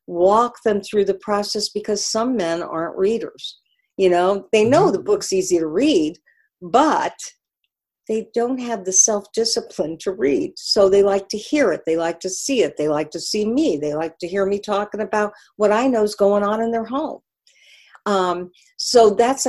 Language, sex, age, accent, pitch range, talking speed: English, female, 50-69, American, 180-225 Hz, 190 wpm